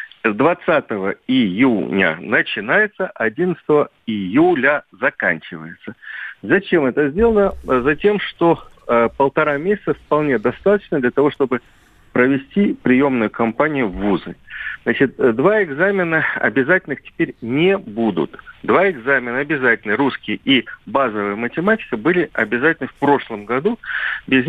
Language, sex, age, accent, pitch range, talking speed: Russian, male, 40-59, native, 115-190 Hz, 110 wpm